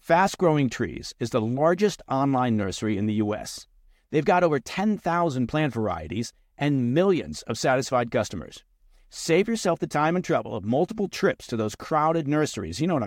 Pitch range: 120-165 Hz